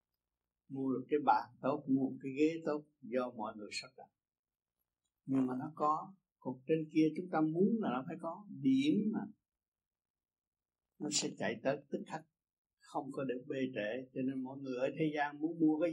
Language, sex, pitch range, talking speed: Vietnamese, male, 130-165 Hz, 190 wpm